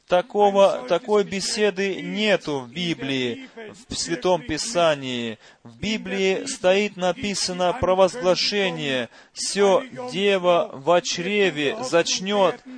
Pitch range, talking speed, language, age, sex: 165-200 Hz, 90 wpm, Russian, 30-49, male